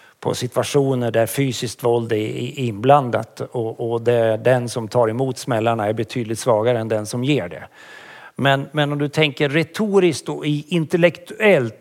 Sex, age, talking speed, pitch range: male, 50-69, 160 wpm, 130-185 Hz